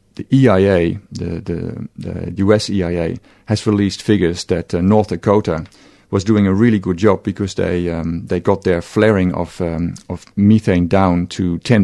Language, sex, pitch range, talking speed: English, male, 90-110 Hz, 170 wpm